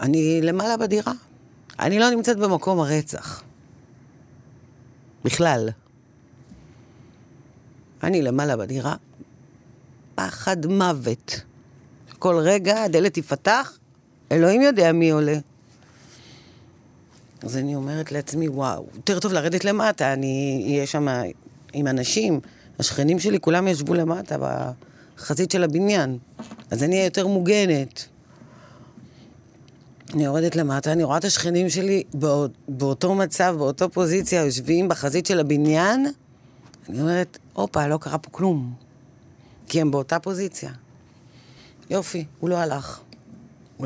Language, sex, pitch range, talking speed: Hebrew, female, 130-170 Hz, 110 wpm